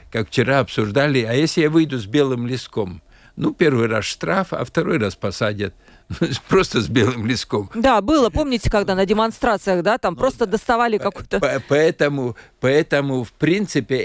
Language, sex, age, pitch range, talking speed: Russian, male, 50-69, 110-150 Hz, 155 wpm